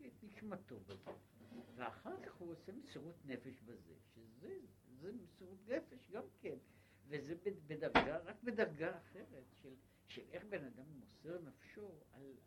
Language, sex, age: Hebrew, male, 60-79